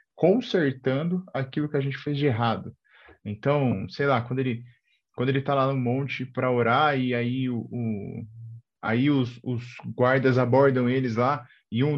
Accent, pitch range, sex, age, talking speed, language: Brazilian, 125-165 Hz, male, 20-39, 170 wpm, Portuguese